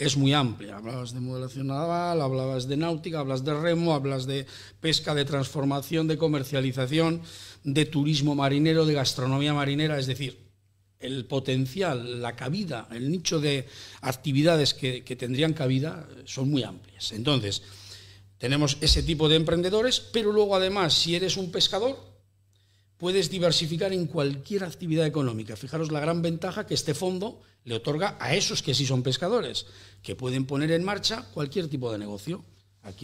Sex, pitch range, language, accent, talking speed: male, 125-165 Hz, Spanish, Spanish, 160 wpm